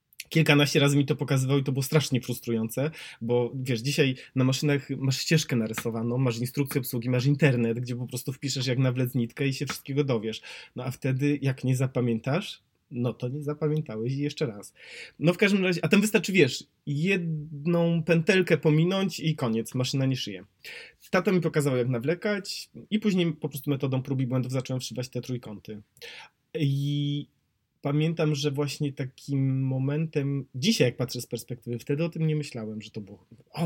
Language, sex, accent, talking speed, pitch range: Polish, male, native, 180 wpm, 125-160 Hz